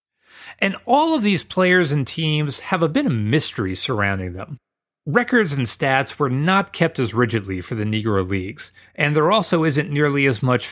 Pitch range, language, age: 110-155 Hz, English, 30-49